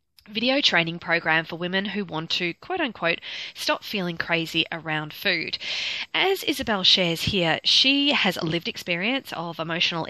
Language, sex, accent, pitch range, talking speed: English, female, Australian, 165-215 Hz, 155 wpm